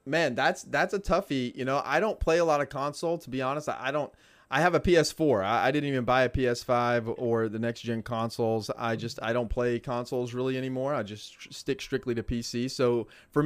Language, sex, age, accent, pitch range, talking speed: English, male, 30-49, American, 120-145 Hz, 230 wpm